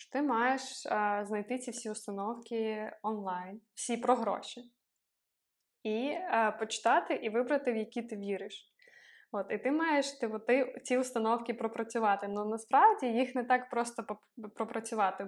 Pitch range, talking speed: 210-255 Hz, 150 wpm